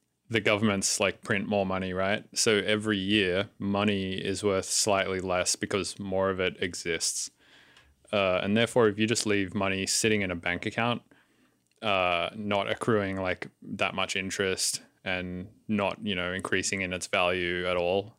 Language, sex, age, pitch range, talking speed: English, male, 20-39, 95-105 Hz, 165 wpm